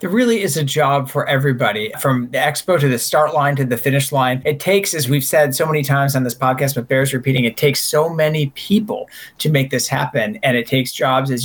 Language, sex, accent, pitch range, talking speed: English, male, American, 130-155 Hz, 240 wpm